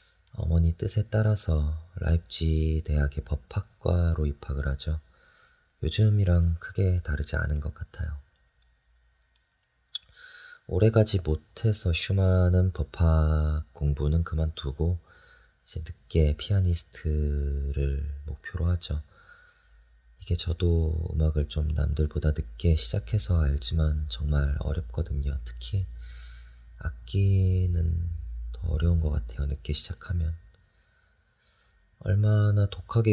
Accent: native